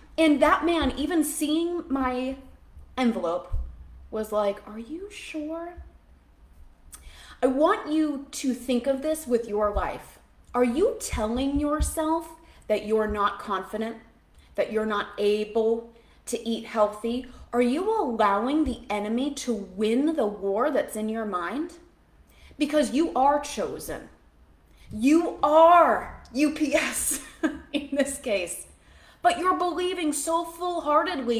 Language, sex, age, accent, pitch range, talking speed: English, female, 20-39, American, 220-300 Hz, 125 wpm